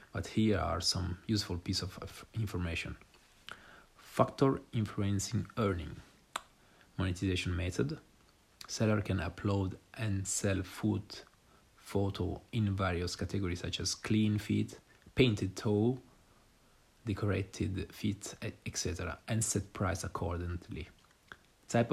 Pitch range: 95-110 Hz